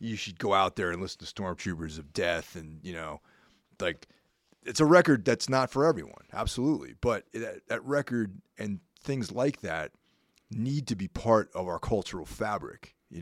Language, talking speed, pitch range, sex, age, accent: English, 175 wpm, 85-115 Hz, male, 30-49, American